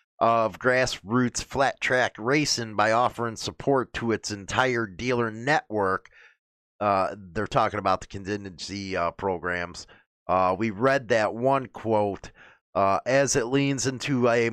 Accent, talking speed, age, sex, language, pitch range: American, 135 wpm, 30-49, male, English, 110-135 Hz